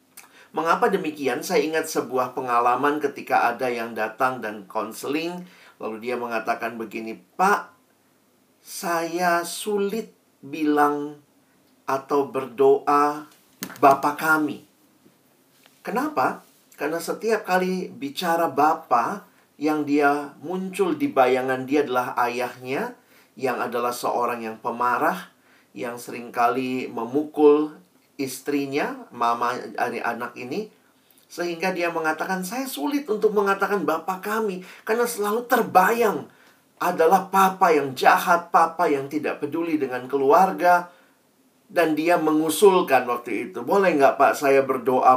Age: 40-59